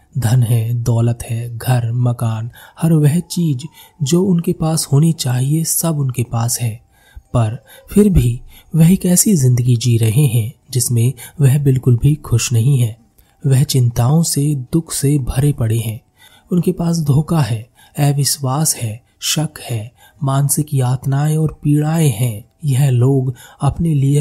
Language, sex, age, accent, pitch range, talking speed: Hindi, male, 30-49, native, 120-150 Hz, 150 wpm